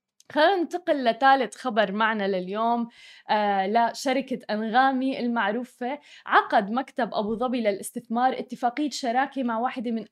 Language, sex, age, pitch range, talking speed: Arabic, female, 20-39, 225-270 Hz, 115 wpm